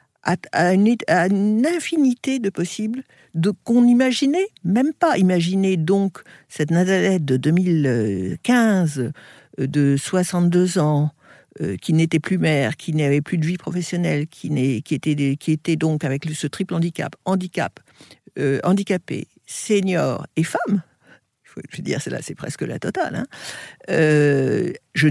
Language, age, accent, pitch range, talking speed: French, 60-79, French, 150-190 Hz, 150 wpm